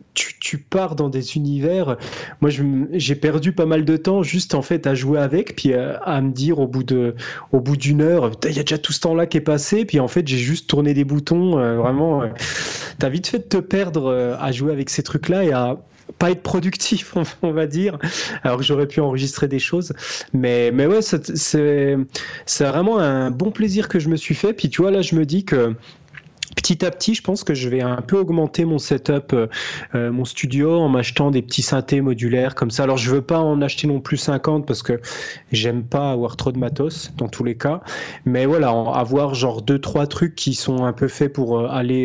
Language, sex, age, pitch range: French, male, 20-39, 130-160 Hz